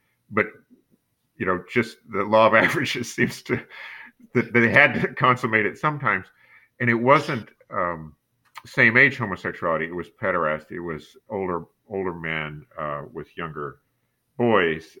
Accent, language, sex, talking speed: American, English, male, 145 wpm